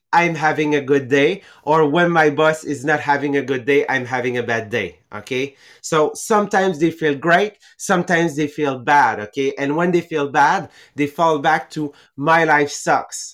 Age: 30-49